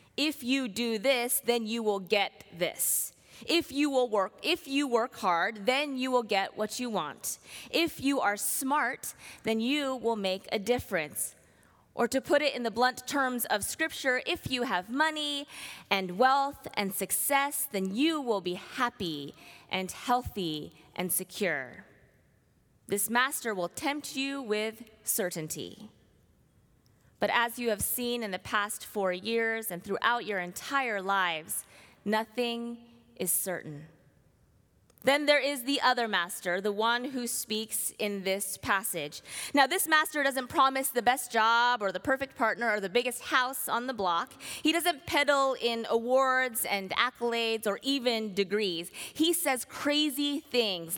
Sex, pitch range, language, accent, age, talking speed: female, 205-275 Hz, English, American, 20-39, 155 wpm